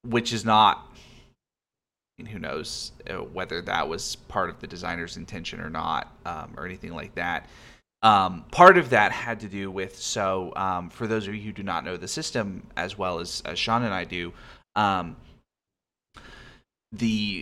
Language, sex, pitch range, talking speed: English, male, 95-115 Hz, 185 wpm